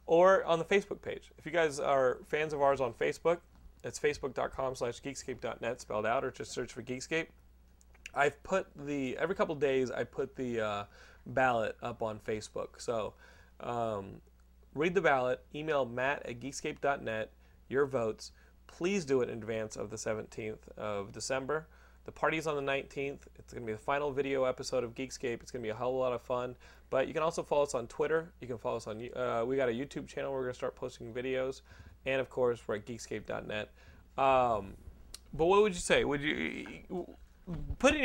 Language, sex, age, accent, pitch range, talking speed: English, male, 30-49, American, 110-145 Hz, 200 wpm